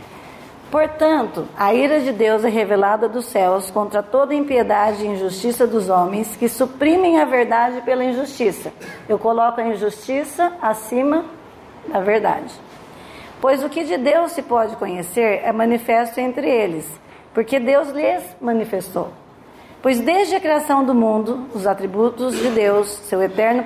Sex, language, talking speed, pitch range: female, Portuguese, 145 wpm, 215-265 Hz